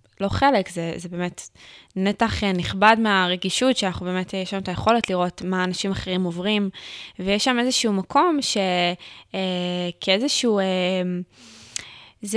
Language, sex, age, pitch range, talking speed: Hebrew, female, 10-29, 180-215 Hz, 130 wpm